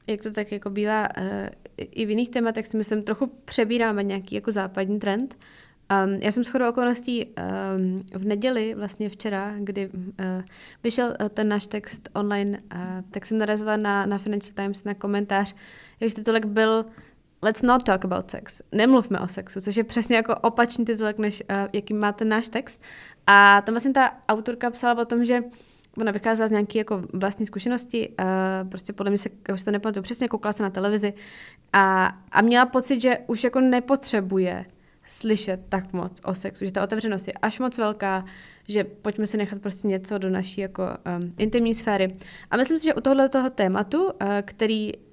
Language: Czech